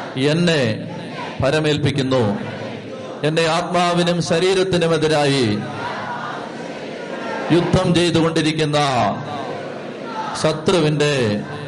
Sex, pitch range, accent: male, 145-175 Hz, native